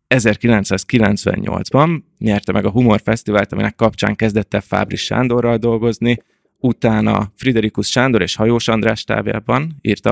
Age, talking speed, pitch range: 20-39, 120 wpm, 105-115 Hz